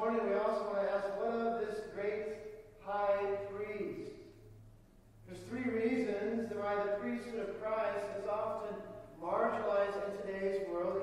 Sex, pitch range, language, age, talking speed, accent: male, 200-230 Hz, English, 40-59, 140 wpm, American